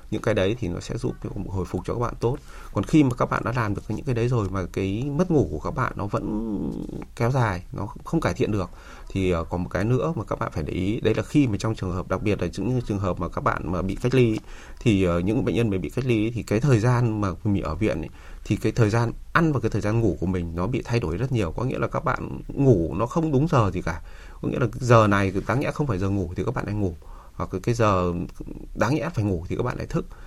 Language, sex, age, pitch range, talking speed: Vietnamese, male, 20-39, 90-120 Hz, 285 wpm